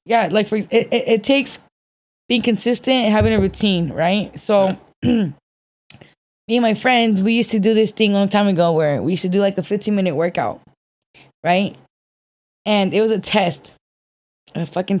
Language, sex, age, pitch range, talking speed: English, female, 10-29, 165-210 Hz, 185 wpm